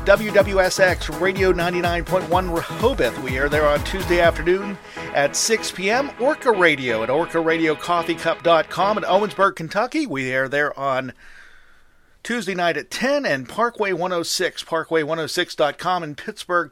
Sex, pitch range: male, 150-200 Hz